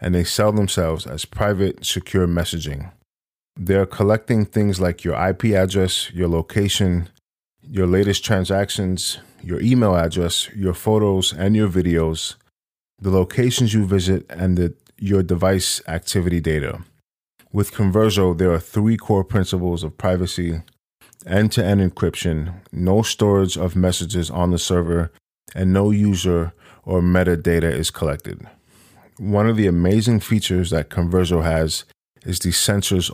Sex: male